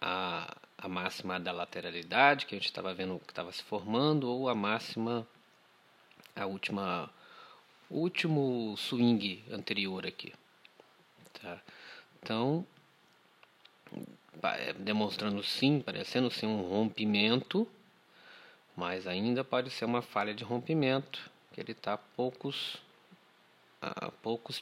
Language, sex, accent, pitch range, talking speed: Portuguese, male, Brazilian, 100-125 Hz, 110 wpm